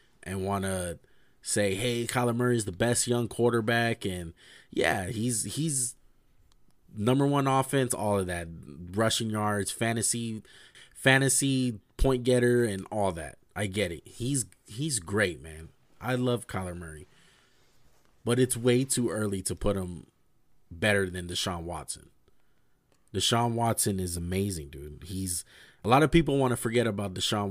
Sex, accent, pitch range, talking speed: male, American, 95-120 Hz, 150 wpm